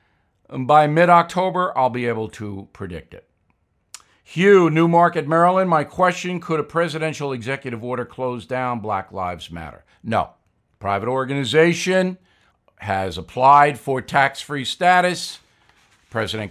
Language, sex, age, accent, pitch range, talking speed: English, male, 60-79, American, 120-170 Hz, 120 wpm